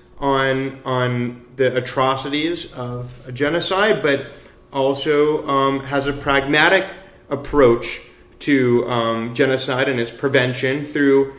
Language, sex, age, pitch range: English, male, 30-49, 130-160 Hz